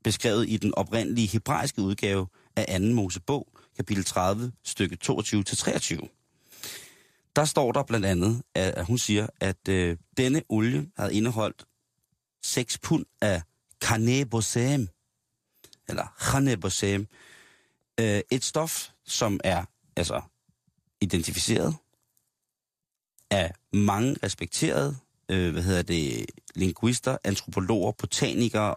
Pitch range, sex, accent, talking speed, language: 95-120 Hz, male, native, 100 wpm, Danish